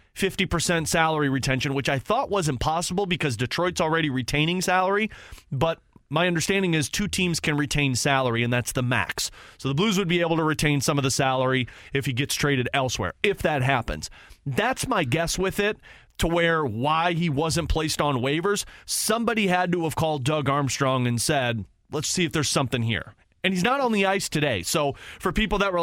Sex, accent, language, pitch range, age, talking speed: male, American, English, 135-175 Hz, 30-49, 200 wpm